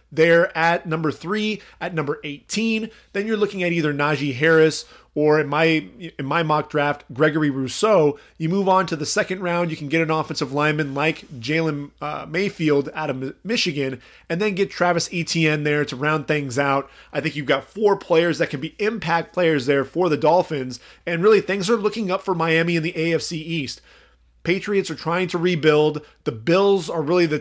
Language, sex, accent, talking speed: English, male, American, 195 wpm